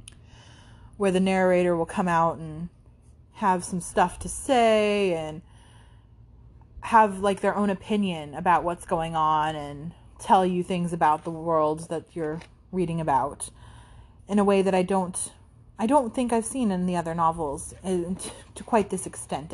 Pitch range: 160-200 Hz